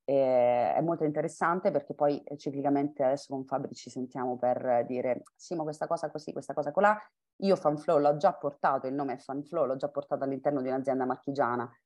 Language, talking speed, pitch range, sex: Italian, 205 wpm, 130-160 Hz, female